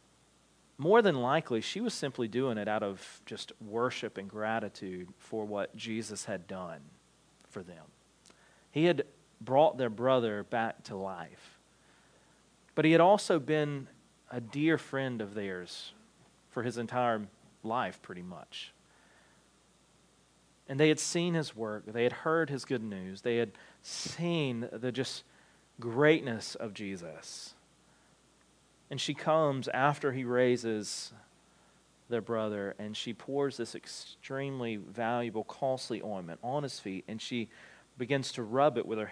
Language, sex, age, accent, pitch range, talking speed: English, male, 40-59, American, 110-145 Hz, 140 wpm